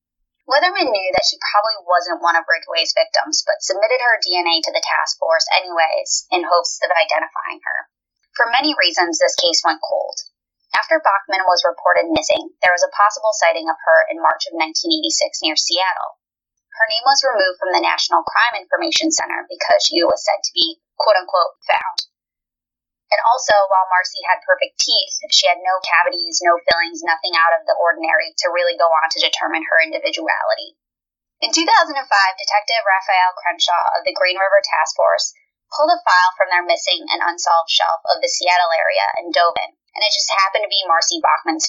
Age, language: 20-39, English